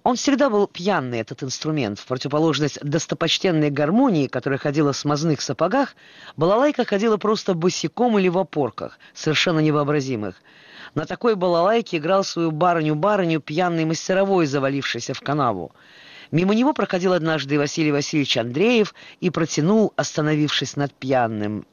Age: 20-39